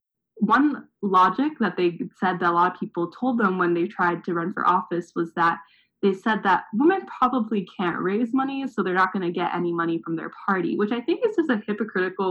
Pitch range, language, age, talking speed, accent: 175-210 Hz, English, 20-39, 230 wpm, American